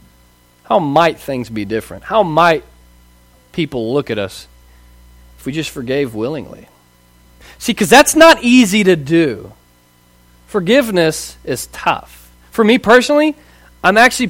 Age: 40-59